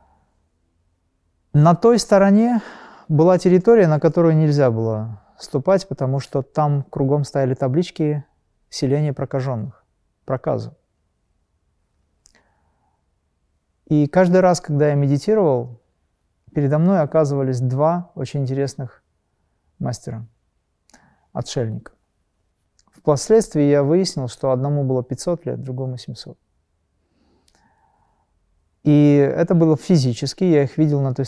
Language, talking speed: Russian, 100 wpm